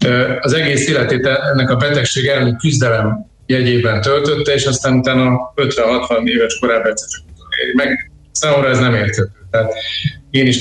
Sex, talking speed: male, 135 wpm